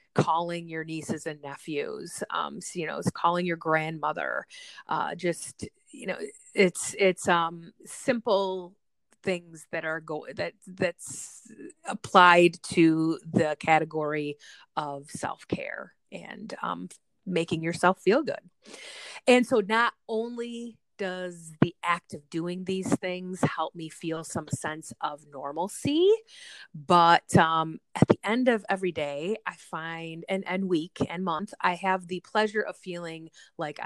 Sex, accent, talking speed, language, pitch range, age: female, American, 140 wpm, English, 160-210 Hz, 30-49